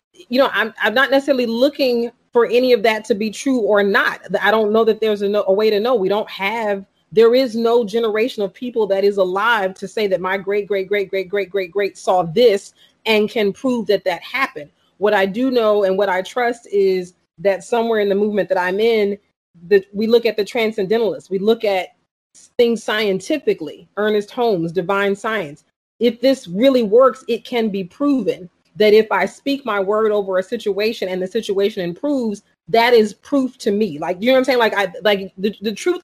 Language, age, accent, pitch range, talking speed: English, 40-59, American, 195-240 Hz, 210 wpm